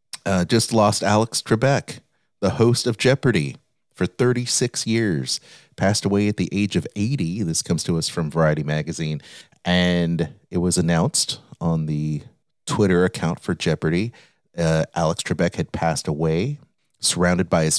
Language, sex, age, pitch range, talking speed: English, male, 30-49, 80-105 Hz, 150 wpm